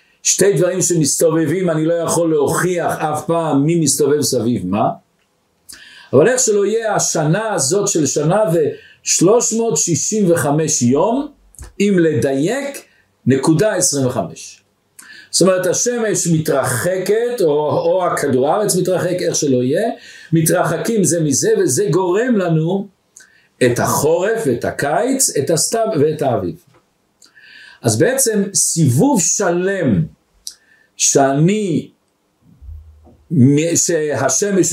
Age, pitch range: 50-69, 160-225 Hz